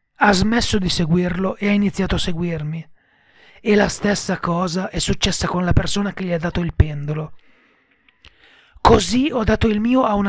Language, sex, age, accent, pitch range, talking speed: Italian, male, 30-49, native, 170-225 Hz, 180 wpm